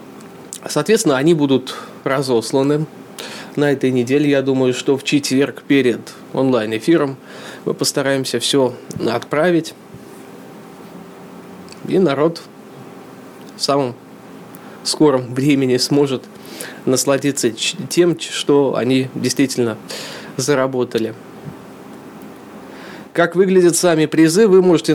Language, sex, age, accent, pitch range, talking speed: Russian, male, 20-39, native, 130-155 Hz, 90 wpm